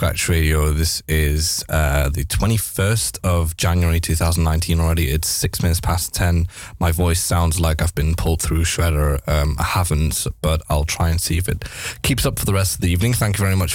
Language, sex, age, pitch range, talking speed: Dutch, male, 10-29, 85-100 Hz, 205 wpm